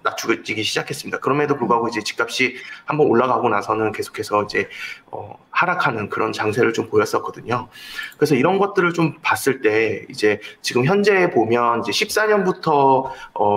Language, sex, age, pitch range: Korean, male, 30-49, 115-165 Hz